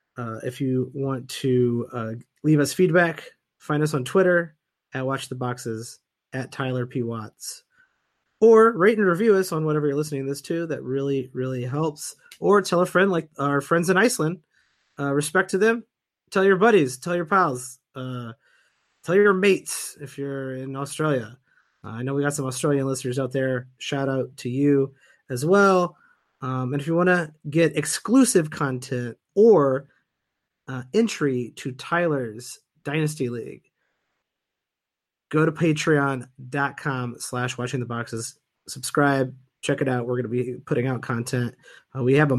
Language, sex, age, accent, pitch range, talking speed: English, male, 30-49, American, 125-155 Hz, 165 wpm